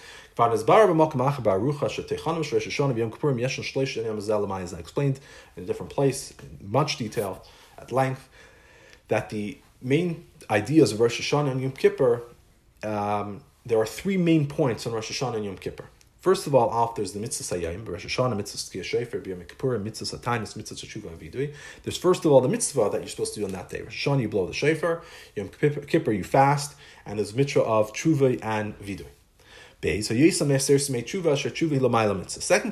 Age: 40-59